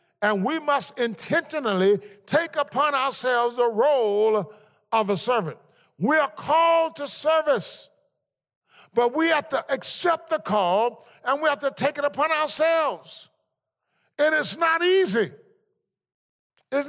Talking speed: 130 wpm